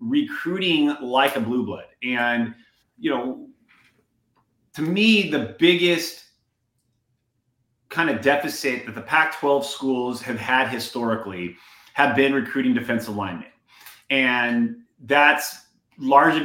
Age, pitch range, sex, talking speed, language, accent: 30-49, 120-170 Hz, male, 110 wpm, English, American